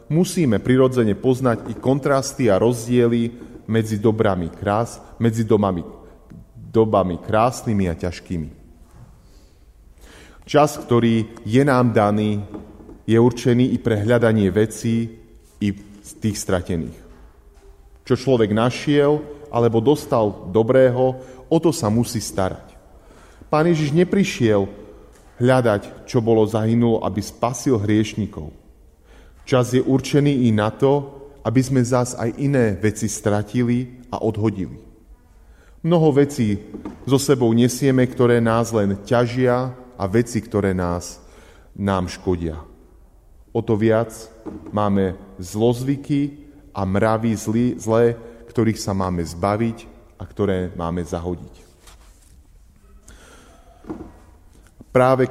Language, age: Slovak, 30-49